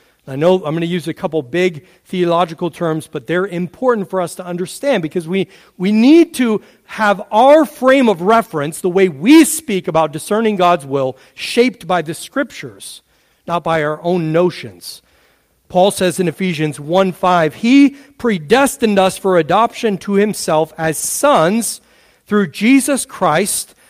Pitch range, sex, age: 170-225 Hz, male, 40-59